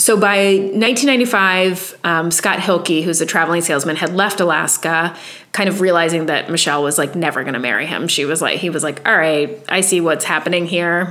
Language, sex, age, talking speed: English, female, 30-49, 205 wpm